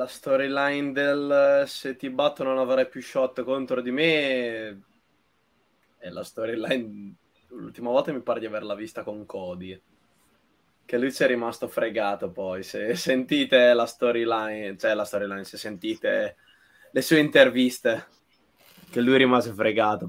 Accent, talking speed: native, 140 wpm